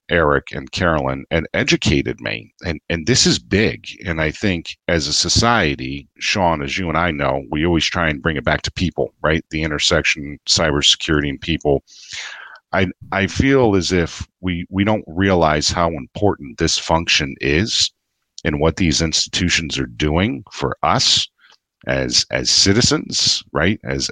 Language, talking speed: English, 160 wpm